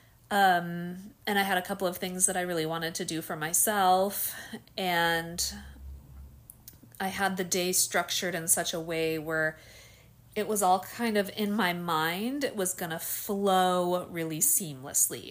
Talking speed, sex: 160 wpm, female